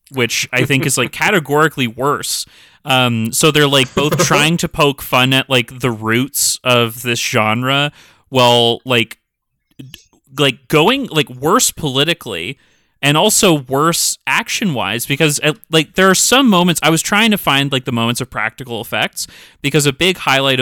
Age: 30-49